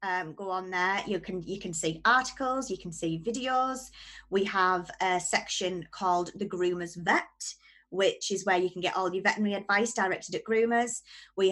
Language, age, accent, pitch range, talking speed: English, 20-39, British, 180-225 Hz, 190 wpm